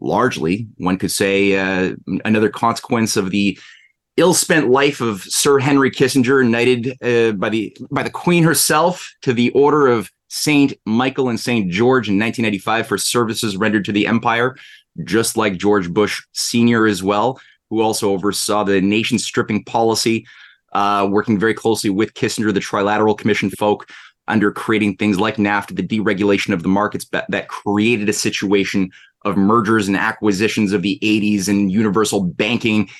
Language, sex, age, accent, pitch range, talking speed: English, male, 30-49, American, 100-120 Hz, 160 wpm